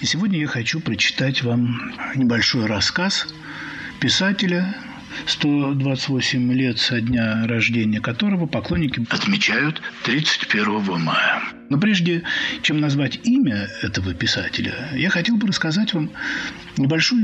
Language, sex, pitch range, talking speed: Russian, male, 115-155 Hz, 110 wpm